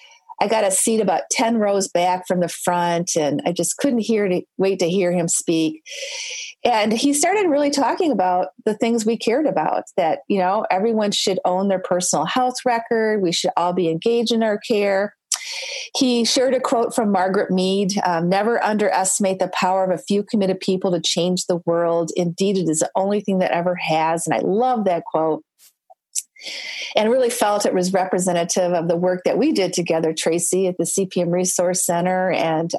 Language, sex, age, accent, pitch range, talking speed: English, female, 40-59, American, 180-235 Hz, 195 wpm